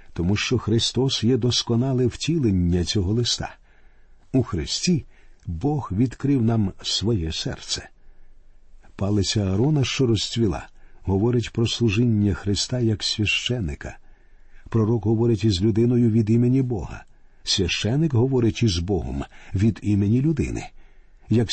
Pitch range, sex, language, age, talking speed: 100-125 Hz, male, Ukrainian, 50-69, 110 wpm